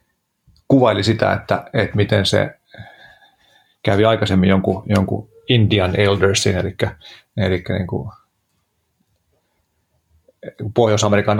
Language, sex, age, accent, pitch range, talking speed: Finnish, male, 30-49, native, 95-110 Hz, 90 wpm